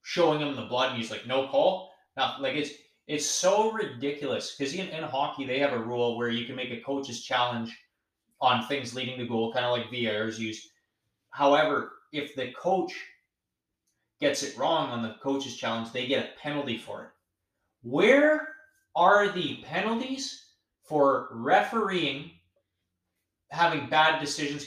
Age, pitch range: 20-39, 125-165 Hz